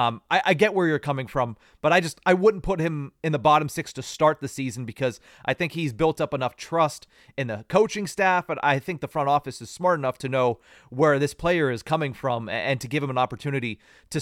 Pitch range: 120-155 Hz